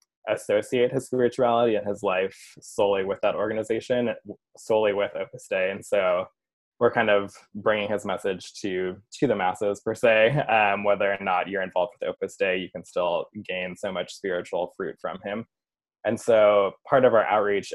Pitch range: 95-105 Hz